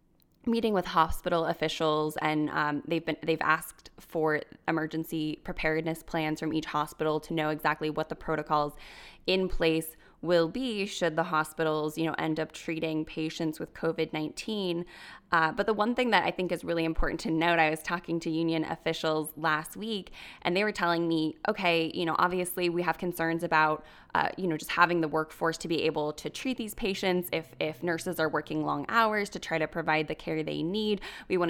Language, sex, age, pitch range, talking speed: English, female, 10-29, 155-180 Hz, 195 wpm